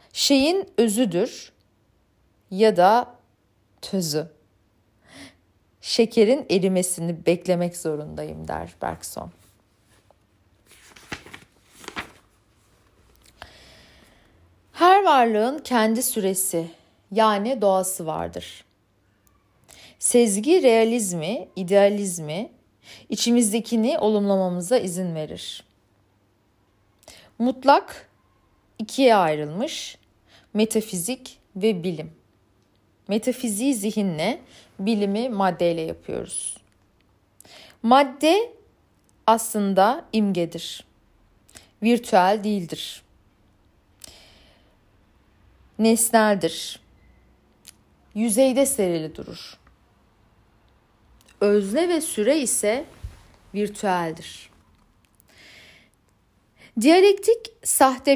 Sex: female